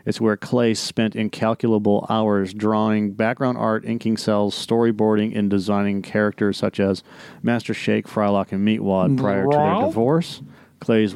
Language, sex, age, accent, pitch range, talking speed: English, male, 40-59, American, 105-120 Hz, 145 wpm